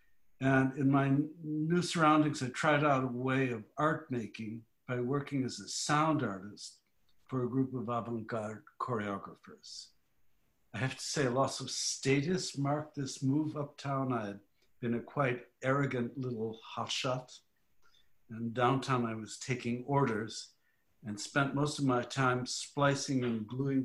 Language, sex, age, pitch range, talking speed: English, male, 60-79, 115-140 Hz, 150 wpm